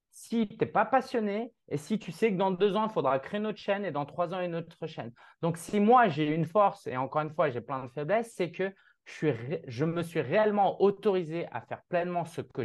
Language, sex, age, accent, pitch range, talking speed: French, male, 20-39, French, 145-185 Hz, 260 wpm